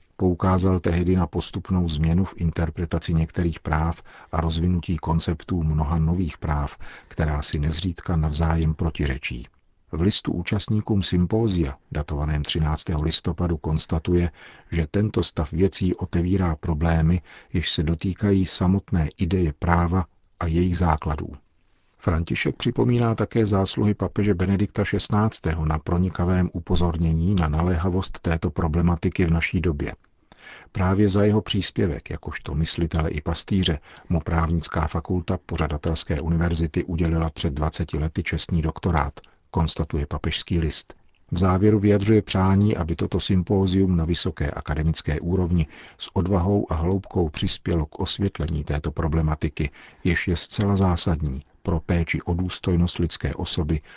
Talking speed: 125 wpm